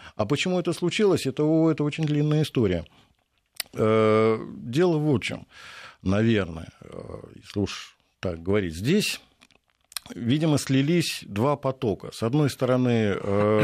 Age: 50-69